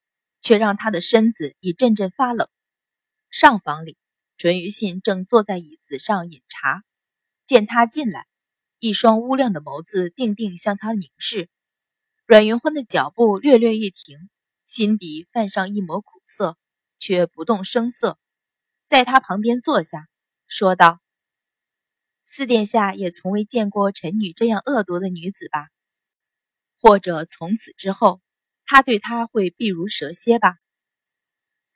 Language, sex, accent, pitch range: Chinese, female, native, 175-235 Hz